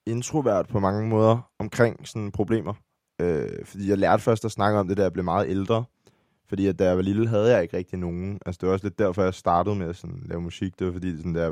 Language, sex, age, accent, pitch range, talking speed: Danish, male, 20-39, native, 90-105 Hz, 265 wpm